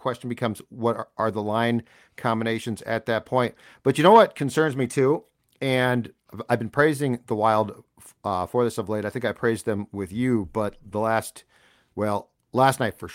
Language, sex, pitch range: English, male, 110-135 Hz